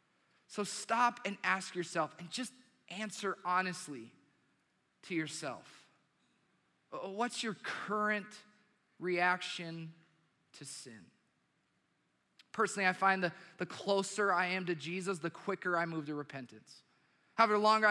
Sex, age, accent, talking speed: male, 20-39, American, 120 wpm